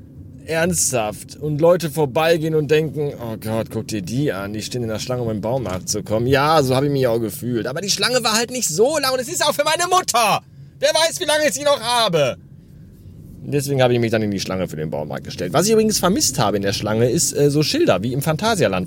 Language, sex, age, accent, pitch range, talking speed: German, male, 30-49, German, 110-160 Hz, 255 wpm